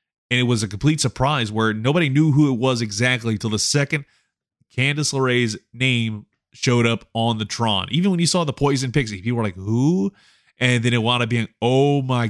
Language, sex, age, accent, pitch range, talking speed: English, male, 20-39, American, 110-135 Hz, 210 wpm